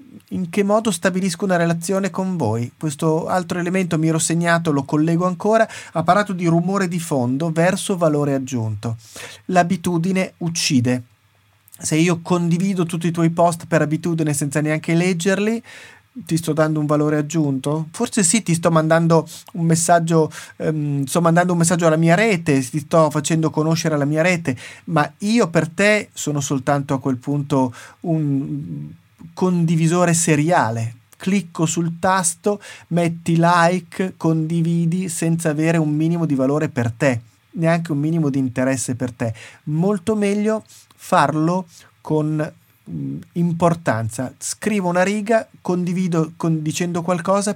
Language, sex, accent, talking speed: Italian, male, native, 140 wpm